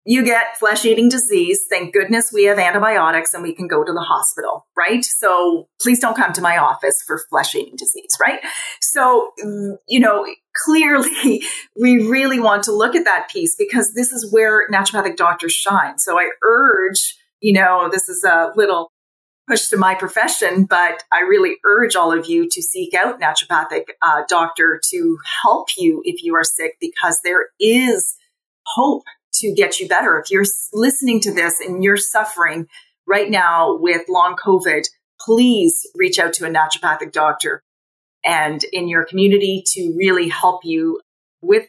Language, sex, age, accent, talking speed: English, female, 30-49, American, 170 wpm